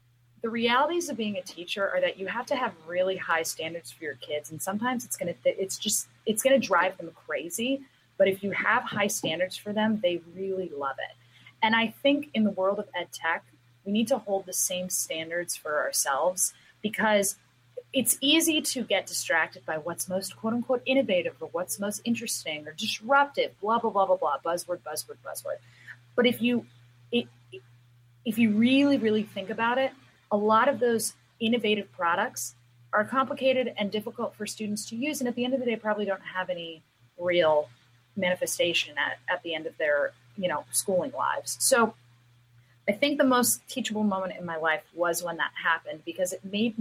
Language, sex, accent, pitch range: English, female, American, 160-225 Hz